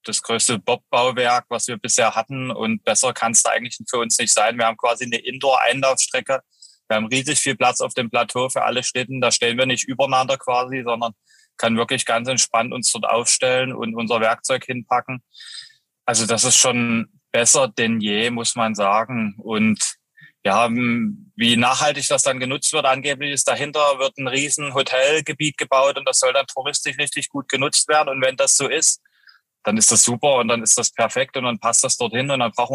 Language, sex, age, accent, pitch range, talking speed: German, male, 20-39, German, 120-140 Hz, 200 wpm